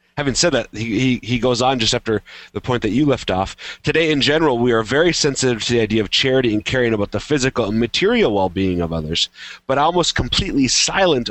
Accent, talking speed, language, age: American, 220 wpm, English, 30-49